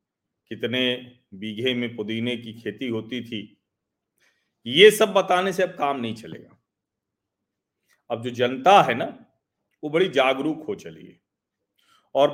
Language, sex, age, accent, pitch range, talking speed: Hindi, male, 40-59, native, 120-170 Hz, 135 wpm